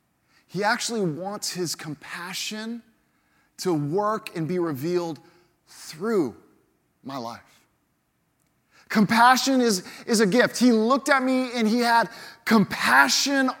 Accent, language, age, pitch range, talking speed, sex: American, English, 20-39, 180-240 Hz, 115 wpm, male